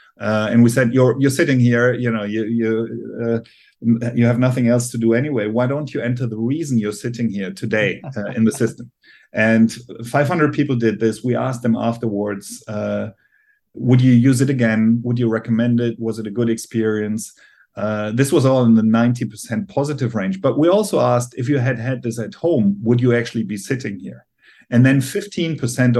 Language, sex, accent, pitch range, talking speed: English, male, German, 115-130 Hz, 200 wpm